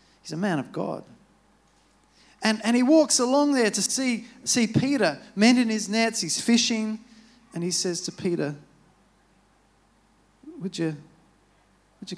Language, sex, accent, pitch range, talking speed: English, male, Australian, 150-220 Hz, 145 wpm